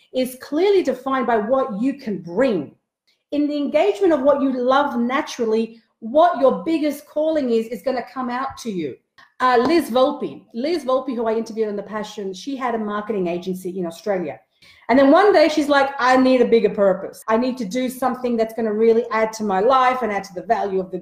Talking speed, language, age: 215 wpm, English, 40-59